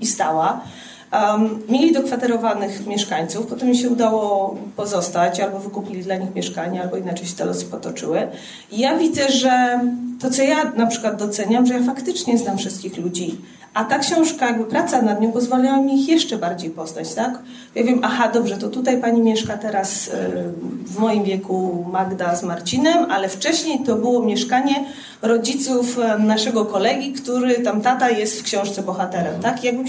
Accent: native